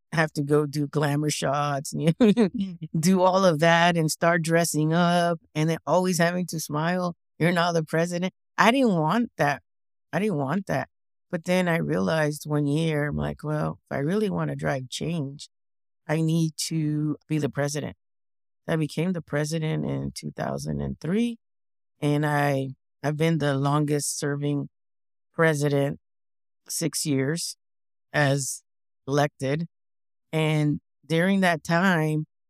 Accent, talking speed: American, 145 wpm